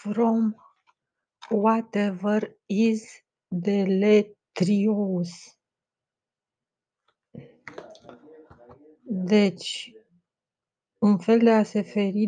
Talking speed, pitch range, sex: 55 wpm, 180-210 Hz, female